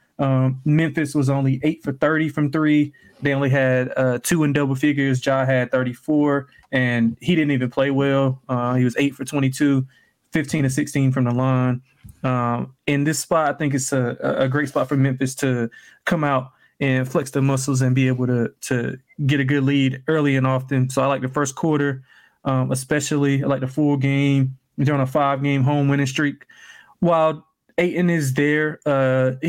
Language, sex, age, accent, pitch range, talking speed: English, male, 20-39, American, 130-145 Hz, 195 wpm